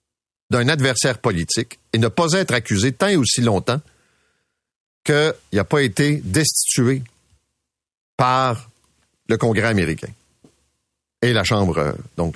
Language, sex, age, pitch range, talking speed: French, male, 50-69, 90-125 Hz, 120 wpm